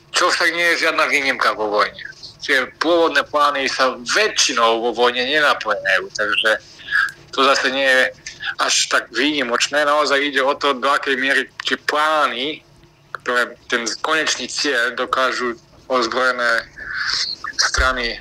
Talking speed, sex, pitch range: 130 wpm, male, 125-160 Hz